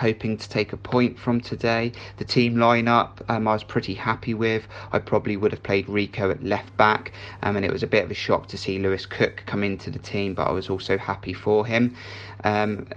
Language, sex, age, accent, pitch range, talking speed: English, male, 20-39, British, 100-110 Hz, 230 wpm